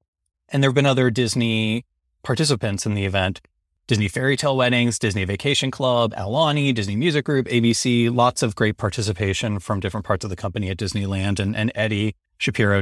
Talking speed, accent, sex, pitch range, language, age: 180 wpm, American, male, 105-125 Hz, English, 30-49